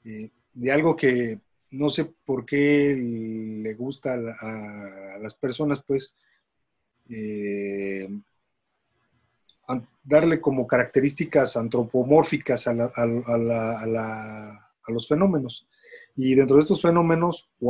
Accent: Mexican